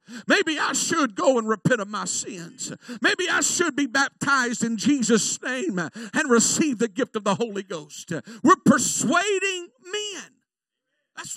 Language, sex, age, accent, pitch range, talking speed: English, male, 50-69, American, 230-315 Hz, 155 wpm